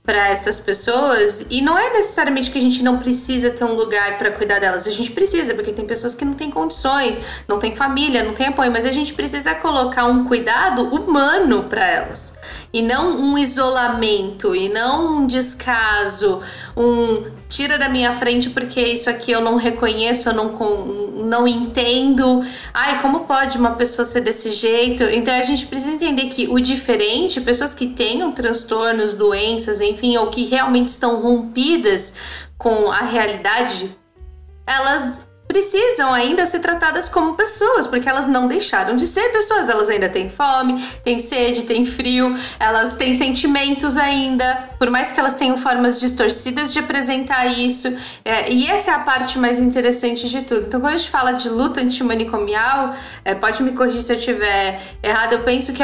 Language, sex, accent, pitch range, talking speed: Portuguese, female, Brazilian, 230-275 Hz, 175 wpm